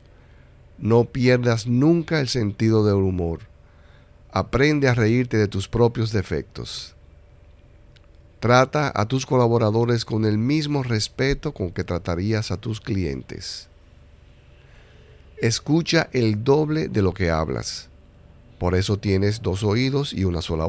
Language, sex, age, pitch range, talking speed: Spanish, male, 50-69, 85-120 Hz, 125 wpm